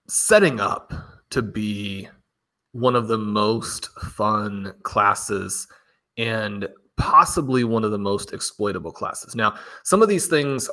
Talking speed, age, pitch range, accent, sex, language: 130 wpm, 30-49, 105-120 Hz, American, male, English